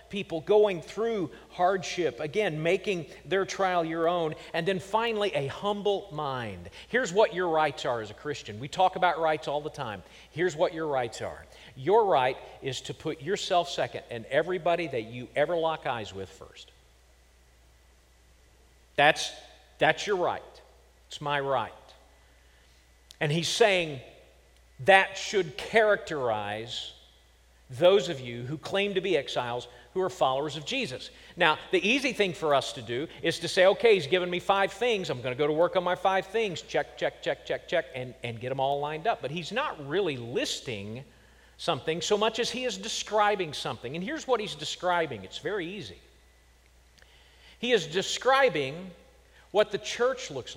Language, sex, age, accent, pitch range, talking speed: English, male, 50-69, American, 115-195 Hz, 170 wpm